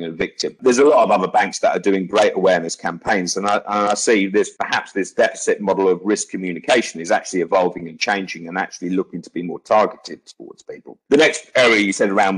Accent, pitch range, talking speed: British, 90-145 Hz, 225 wpm